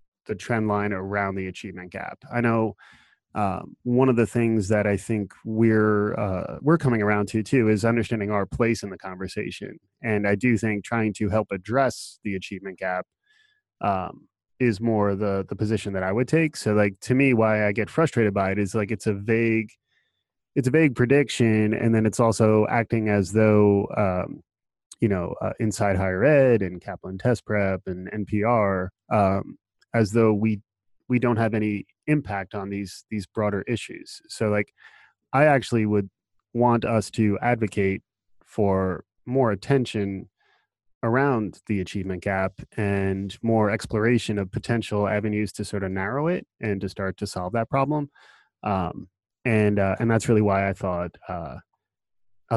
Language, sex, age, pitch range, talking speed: English, male, 20-39, 100-115 Hz, 170 wpm